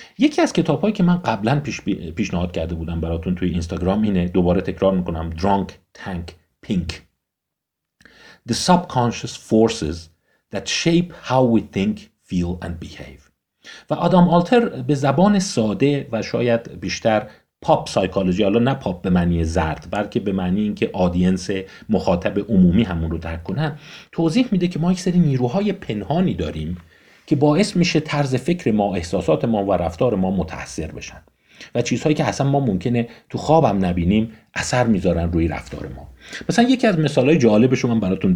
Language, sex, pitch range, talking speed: Persian, male, 90-150 Hz, 165 wpm